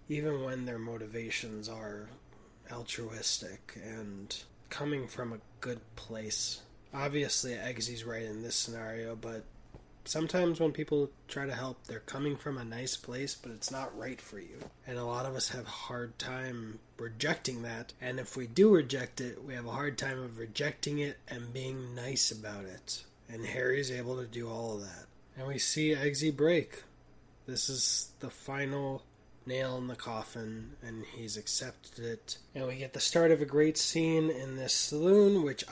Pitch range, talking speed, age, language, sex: 120-150 Hz, 175 wpm, 20-39, English, male